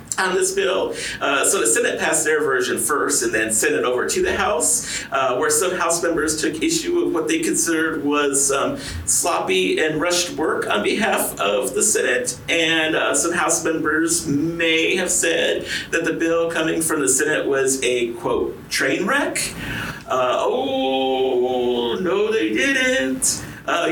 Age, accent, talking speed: 40-59, American, 170 wpm